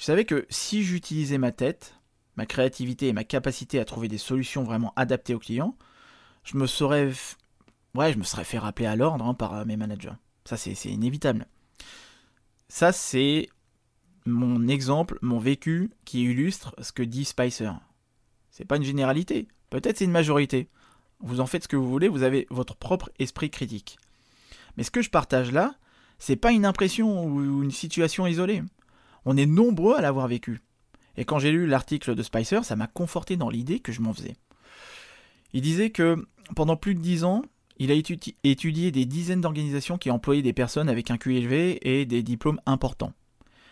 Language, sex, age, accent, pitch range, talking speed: French, male, 20-39, French, 120-165 Hz, 180 wpm